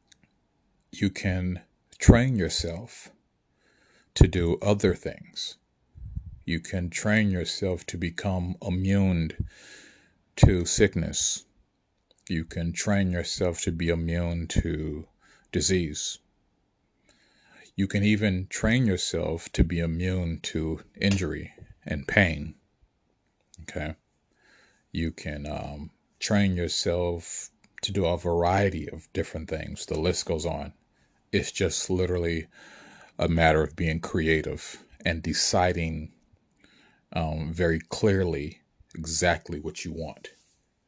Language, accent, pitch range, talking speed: English, American, 80-95 Hz, 105 wpm